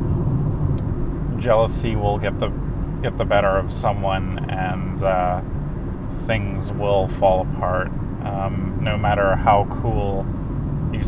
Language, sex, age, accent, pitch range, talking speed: English, male, 30-49, American, 95-115 Hz, 115 wpm